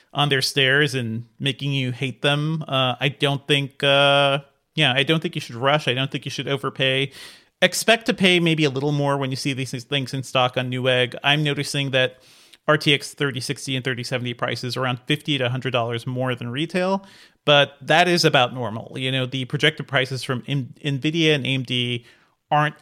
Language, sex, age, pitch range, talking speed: English, male, 30-49, 130-150 Hz, 190 wpm